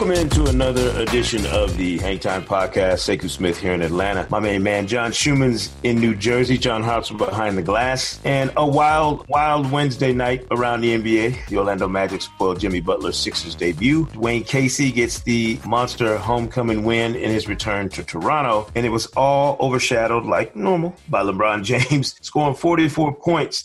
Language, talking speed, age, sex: English, 175 wpm, 30-49, male